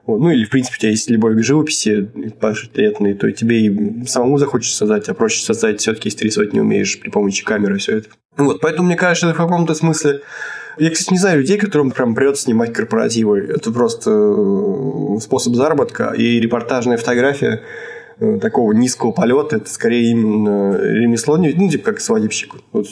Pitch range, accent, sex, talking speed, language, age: 115-175 Hz, native, male, 175 wpm, Russian, 20-39